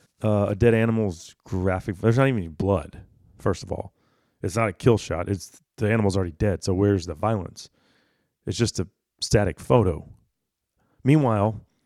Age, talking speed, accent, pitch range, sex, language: 40-59, 165 wpm, American, 95-115 Hz, male, English